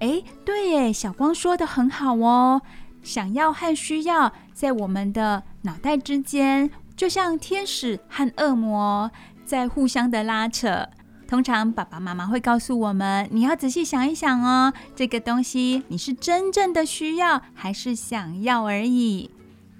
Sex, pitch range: female, 215-285 Hz